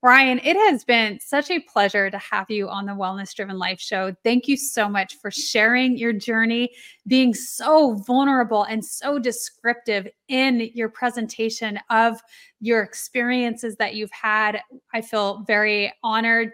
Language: English